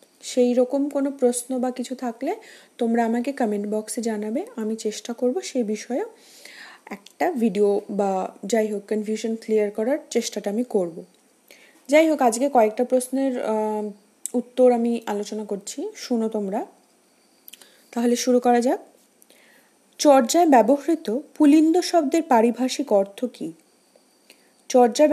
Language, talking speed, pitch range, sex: Bengali, 120 wpm, 220-285 Hz, female